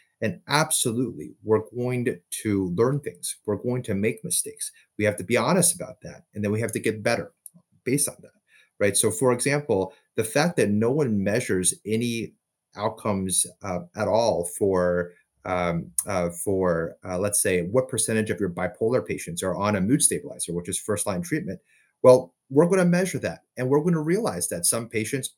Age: 30-49